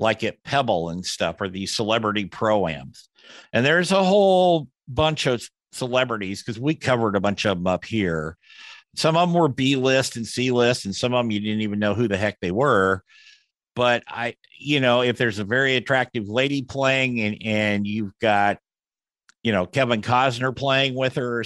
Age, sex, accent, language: 50-69, male, American, English